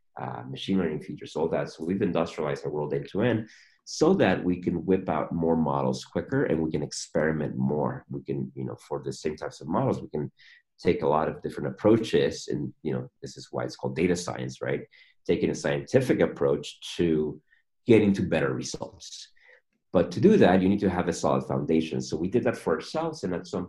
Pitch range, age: 70-95 Hz, 30-49